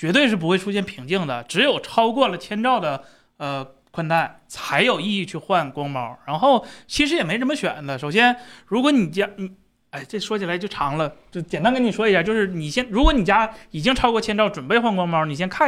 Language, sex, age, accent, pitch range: Chinese, male, 30-49, native, 165-220 Hz